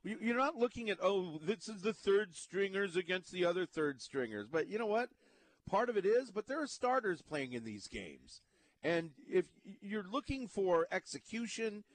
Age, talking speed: 40-59, 185 wpm